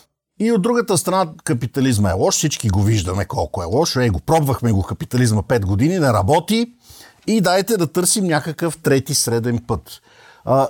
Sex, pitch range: male, 110-160 Hz